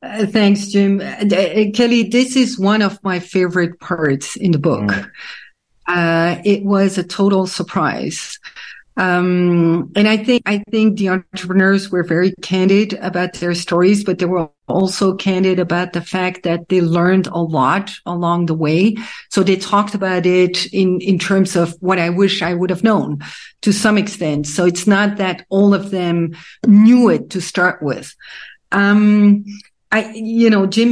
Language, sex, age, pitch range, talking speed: English, female, 50-69, 180-210 Hz, 170 wpm